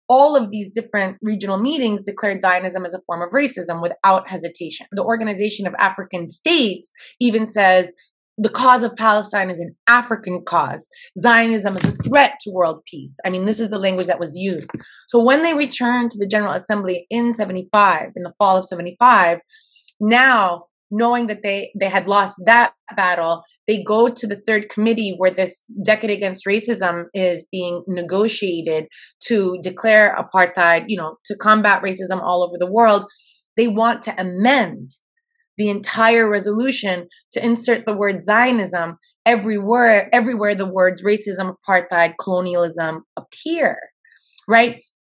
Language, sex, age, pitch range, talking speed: English, female, 30-49, 185-235 Hz, 155 wpm